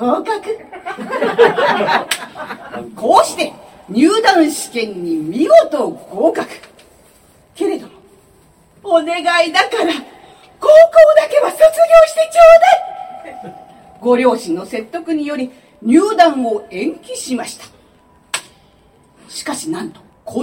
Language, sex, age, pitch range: Japanese, female, 40-59, 240-345 Hz